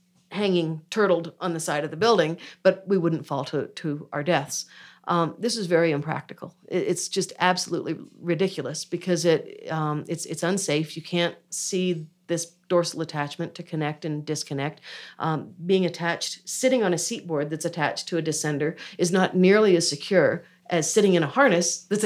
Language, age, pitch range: English, 50-69, 160-185 Hz